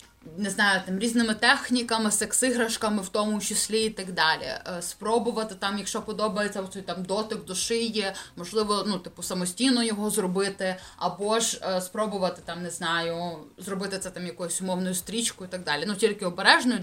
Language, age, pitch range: Ukrainian, 20-39, 185-230 Hz